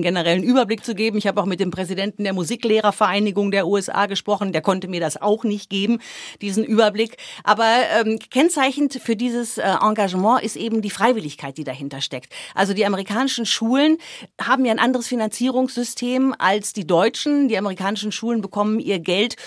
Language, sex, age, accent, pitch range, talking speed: German, female, 50-69, German, 180-235 Hz, 170 wpm